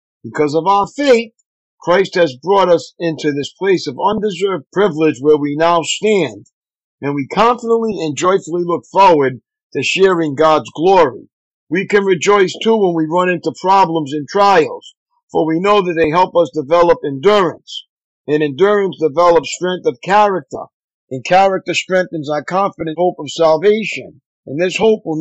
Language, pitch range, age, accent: English, 155-200 Hz, 50-69, American